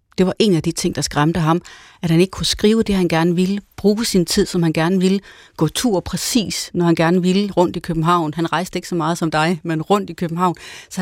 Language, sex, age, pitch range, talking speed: Danish, female, 30-49, 160-195 Hz, 255 wpm